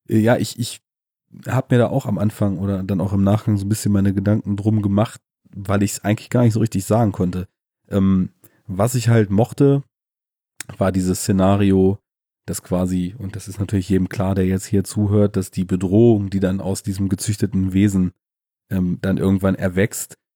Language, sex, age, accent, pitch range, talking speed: German, male, 30-49, German, 95-110 Hz, 190 wpm